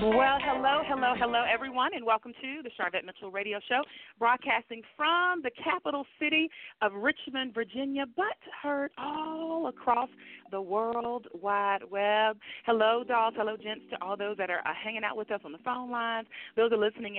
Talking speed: 175 wpm